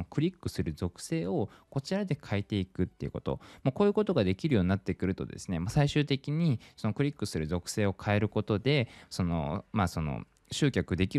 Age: 20-39